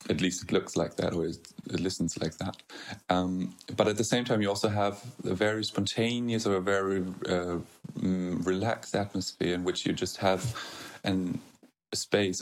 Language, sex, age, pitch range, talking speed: English, male, 30-49, 95-115 Hz, 175 wpm